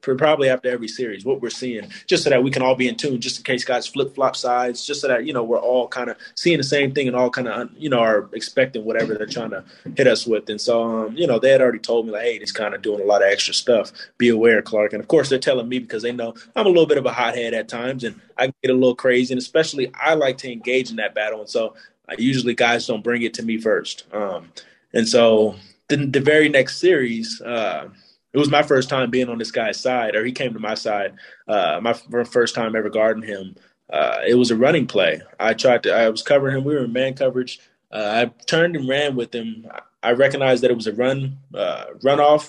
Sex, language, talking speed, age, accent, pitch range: male, English, 260 wpm, 20-39, American, 115-140 Hz